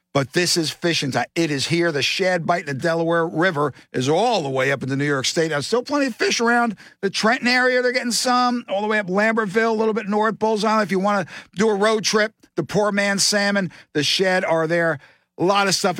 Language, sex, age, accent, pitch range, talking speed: English, male, 60-79, American, 155-220 Hz, 250 wpm